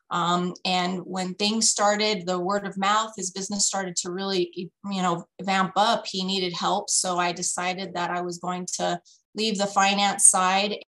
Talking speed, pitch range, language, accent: 180 wpm, 185-210 Hz, English, American